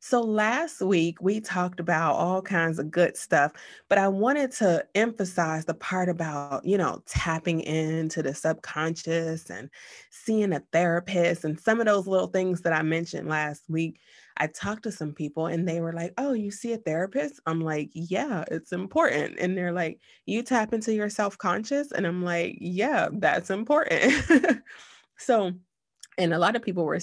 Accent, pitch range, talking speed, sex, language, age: American, 160-195 Hz, 180 wpm, female, English, 20-39